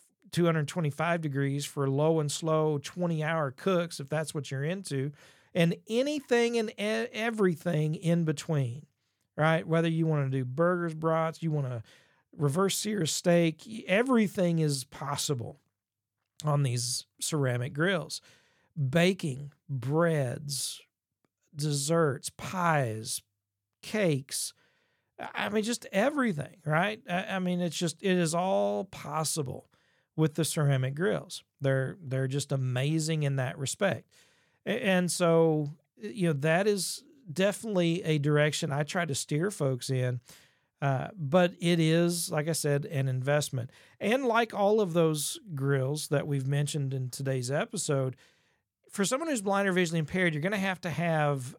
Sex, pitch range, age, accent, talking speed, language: male, 140-175 Hz, 40-59, American, 135 wpm, English